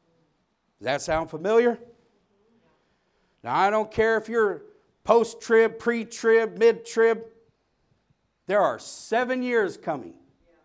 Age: 50-69